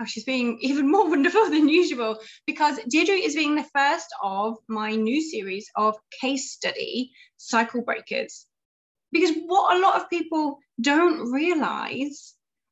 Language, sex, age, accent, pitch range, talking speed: English, female, 20-39, British, 230-310 Hz, 145 wpm